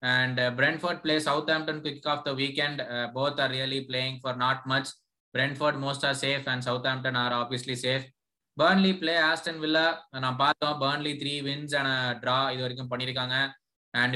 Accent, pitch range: native, 130-155 Hz